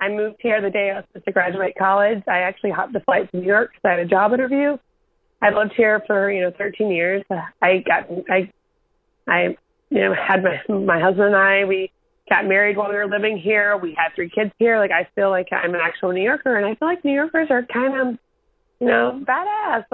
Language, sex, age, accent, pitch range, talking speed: English, female, 30-49, American, 195-260 Hz, 240 wpm